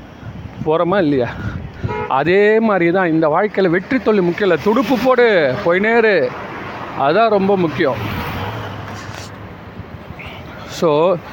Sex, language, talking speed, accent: male, Tamil, 100 wpm, native